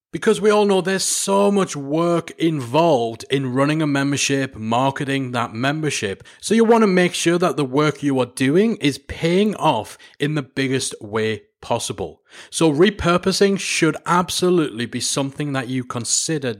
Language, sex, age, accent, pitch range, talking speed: English, male, 30-49, British, 130-180 Hz, 165 wpm